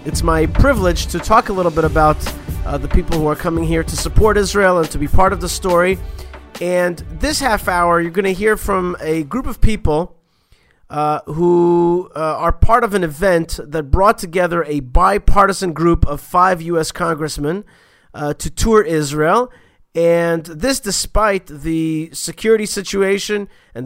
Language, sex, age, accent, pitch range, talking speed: English, male, 40-59, American, 155-195 Hz, 170 wpm